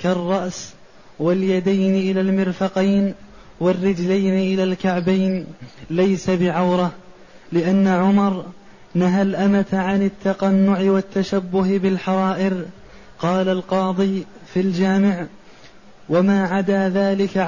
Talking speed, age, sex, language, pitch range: 80 wpm, 20-39, male, Arabic, 190-200 Hz